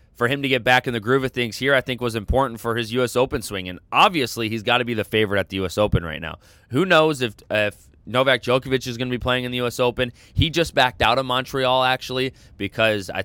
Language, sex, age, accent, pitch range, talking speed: English, male, 20-39, American, 110-130 Hz, 265 wpm